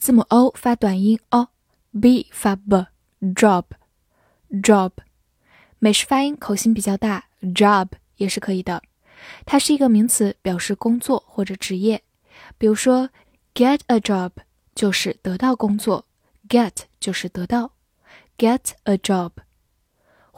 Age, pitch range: 10-29, 200-245 Hz